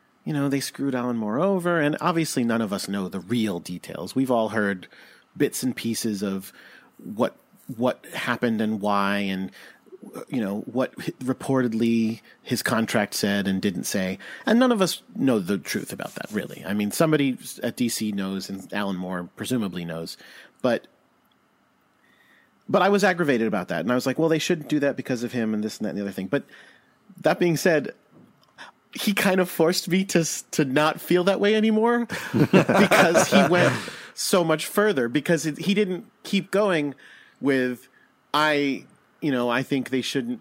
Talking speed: 185 wpm